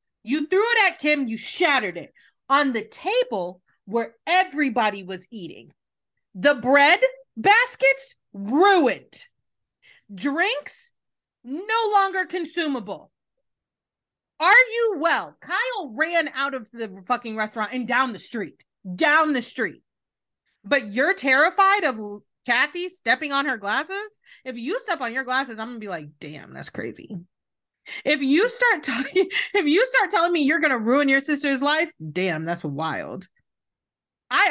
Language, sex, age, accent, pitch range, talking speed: English, female, 30-49, American, 220-335 Hz, 140 wpm